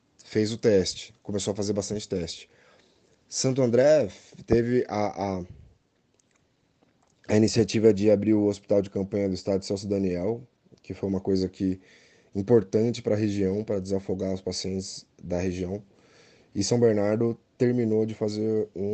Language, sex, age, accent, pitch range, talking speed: Portuguese, male, 20-39, Brazilian, 95-110 Hz, 150 wpm